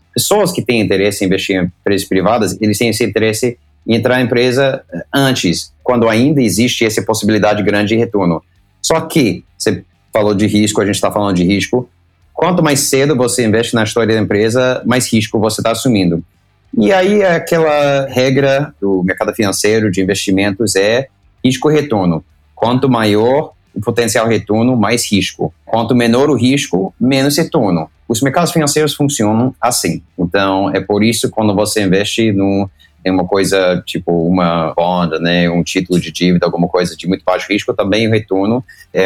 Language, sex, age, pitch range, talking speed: Portuguese, male, 30-49, 95-125 Hz, 170 wpm